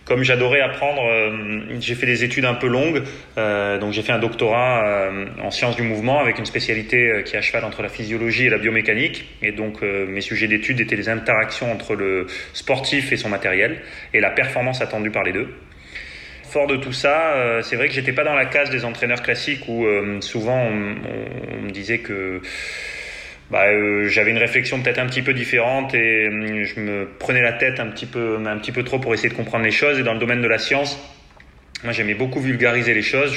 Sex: male